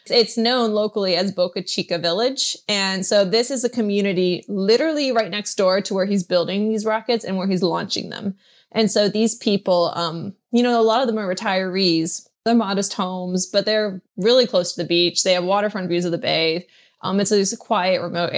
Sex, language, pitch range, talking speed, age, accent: female, English, 180-215 Hz, 210 wpm, 20-39, American